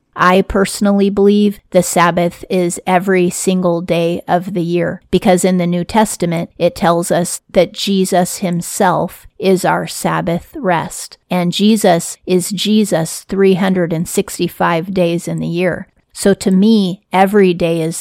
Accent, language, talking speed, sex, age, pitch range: American, English, 140 wpm, female, 30-49, 175-195 Hz